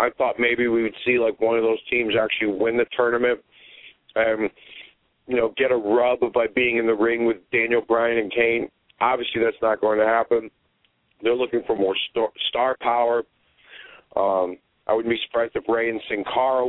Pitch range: 115-130 Hz